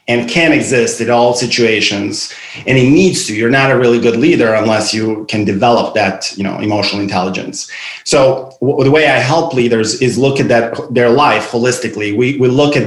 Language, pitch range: English, 110-130 Hz